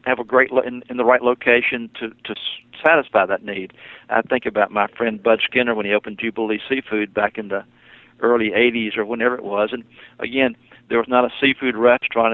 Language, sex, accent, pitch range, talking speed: English, male, American, 105-120 Hz, 210 wpm